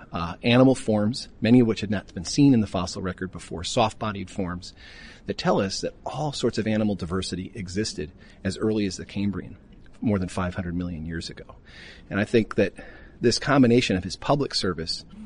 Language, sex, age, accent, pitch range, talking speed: English, male, 40-59, American, 95-110 Hz, 190 wpm